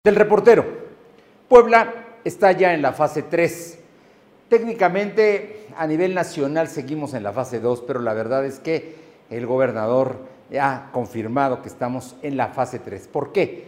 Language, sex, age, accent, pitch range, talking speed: Spanish, male, 50-69, Mexican, 130-175 Hz, 160 wpm